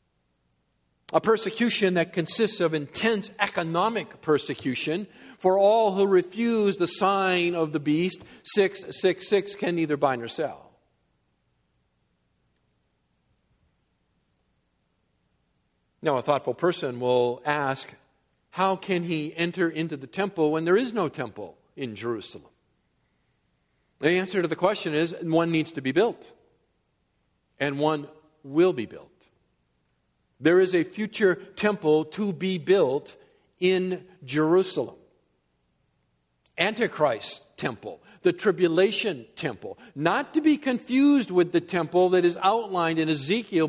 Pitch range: 155-195 Hz